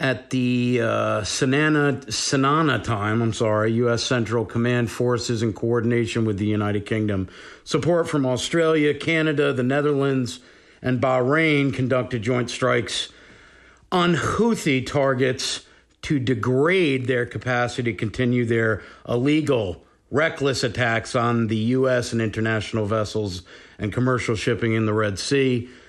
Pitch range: 115-135 Hz